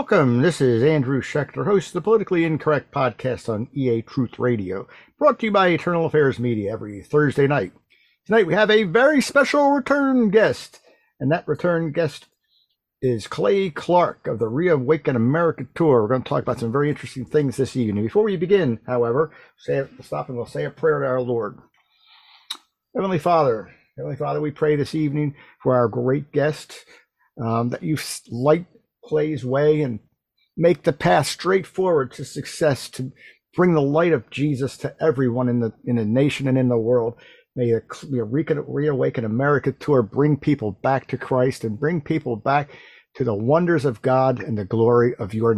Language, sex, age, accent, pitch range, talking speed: English, male, 50-69, American, 120-160 Hz, 185 wpm